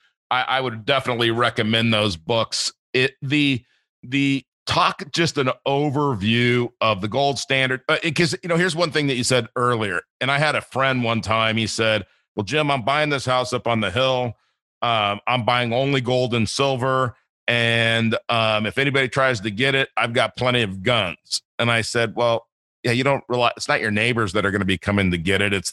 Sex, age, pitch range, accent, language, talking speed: male, 40-59, 110-130 Hz, American, English, 210 wpm